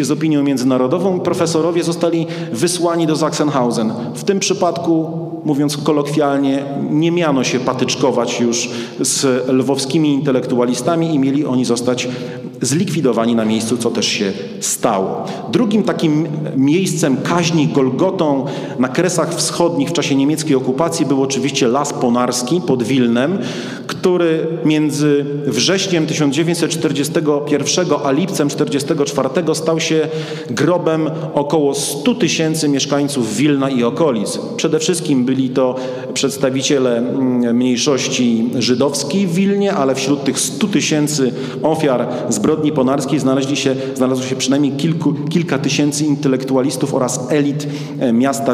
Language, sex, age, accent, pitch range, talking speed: Polish, male, 40-59, native, 130-160 Hz, 120 wpm